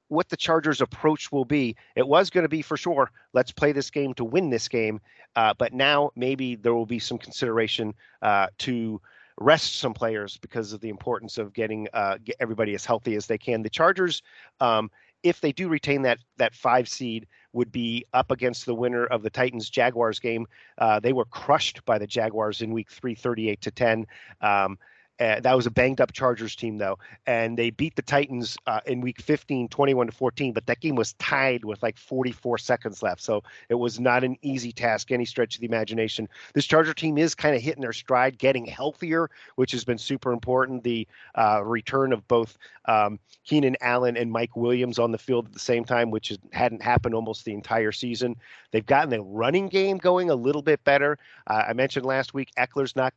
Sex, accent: male, American